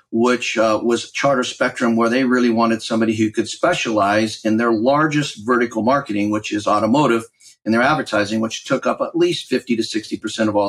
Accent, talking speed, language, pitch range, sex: American, 190 wpm, English, 105-125 Hz, male